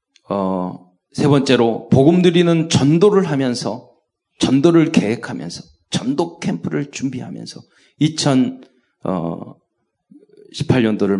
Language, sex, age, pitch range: Korean, male, 40-59, 115-175 Hz